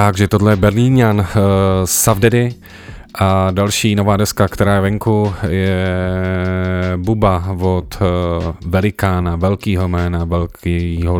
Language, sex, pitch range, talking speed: Czech, male, 90-100 Hz, 115 wpm